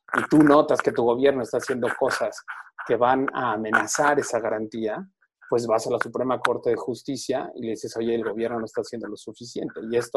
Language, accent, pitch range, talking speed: Spanish, Mexican, 115-155 Hz, 210 wpm